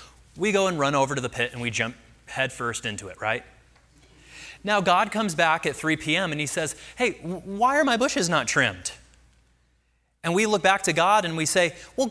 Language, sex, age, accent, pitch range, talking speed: English, male, 30-49, American, 100-170 Hz, 210 wpm